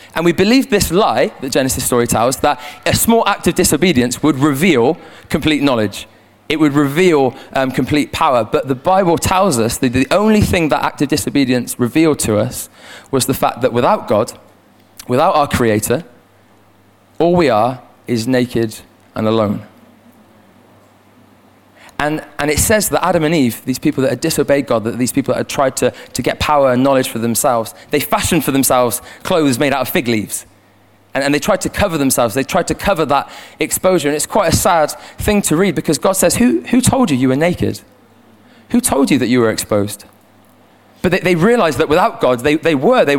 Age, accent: 20-39, British